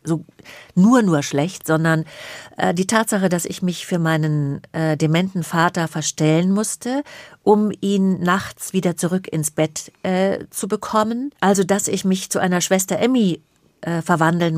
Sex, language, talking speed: female, German, 155 wpm